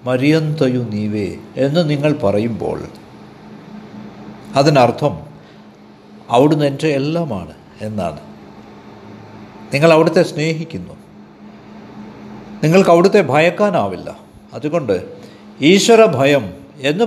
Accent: native